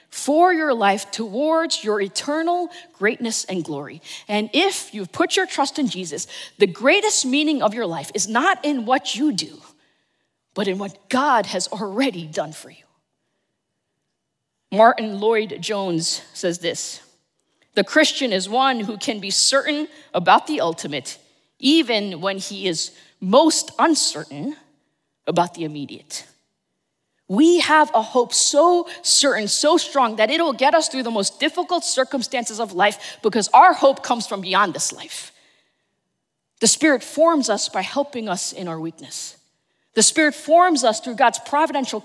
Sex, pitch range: female, 200-300 Hz